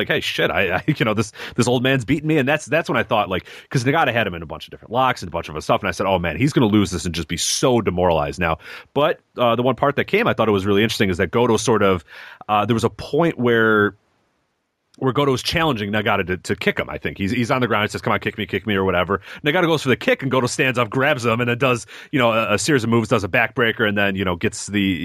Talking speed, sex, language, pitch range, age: 315 wpm, male, English, 100-130 Hz, 30-49